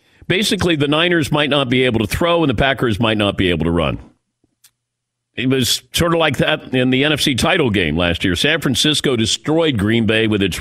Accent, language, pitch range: American, English, 110-150 Hz